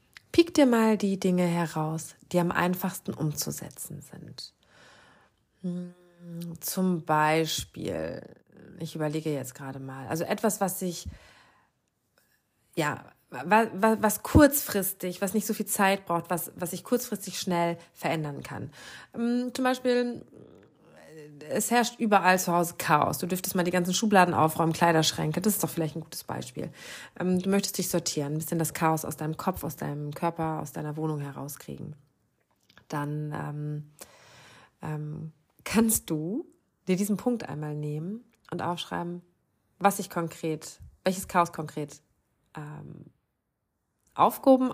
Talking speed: 135 wpm